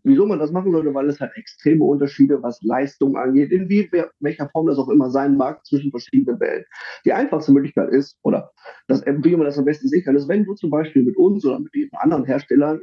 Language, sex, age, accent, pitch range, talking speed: German, male, 30-49, German, 140-195 Hz, 235 wpm